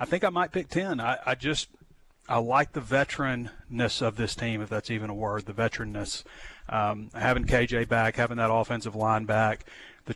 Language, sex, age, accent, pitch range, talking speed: English, male, 30-49, American, 110-125 Hz, 195 wpm